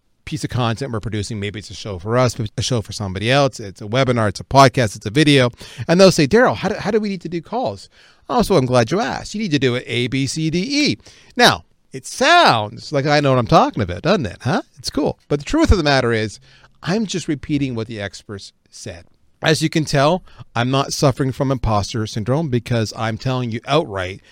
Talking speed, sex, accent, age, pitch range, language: 240 wpm, male, American, 40-59, 110-160 Hz, English